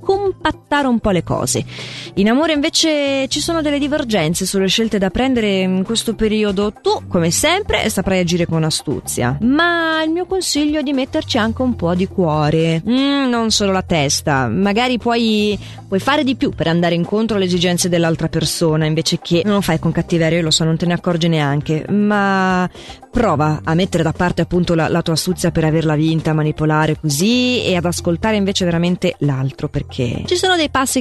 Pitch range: 170-255 Hz